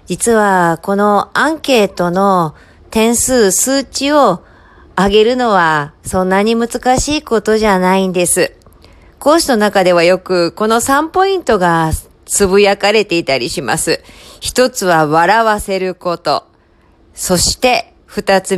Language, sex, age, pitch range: Japanese, female, 40-59, 170-235 Hz